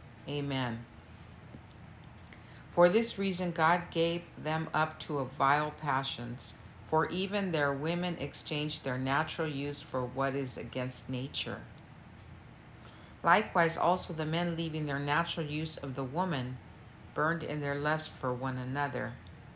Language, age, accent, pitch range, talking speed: English, 50-69, American, 130-170 Hz, 130 wpm